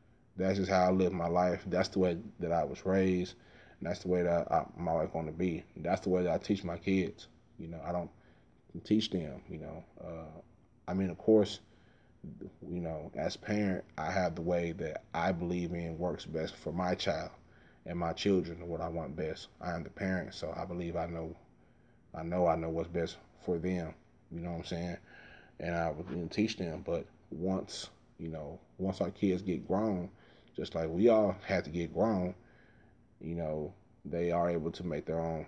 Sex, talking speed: male, 210 wpm